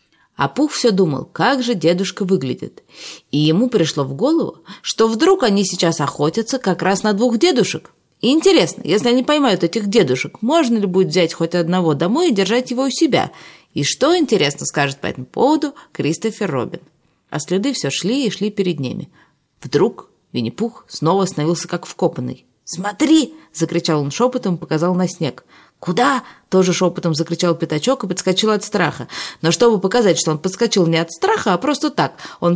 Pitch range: 165-250 Hz